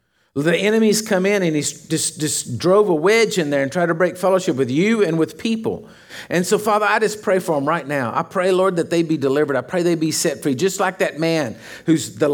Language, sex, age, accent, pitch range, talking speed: English, male, 50-69, American, 160-210 Hz, 250 wpm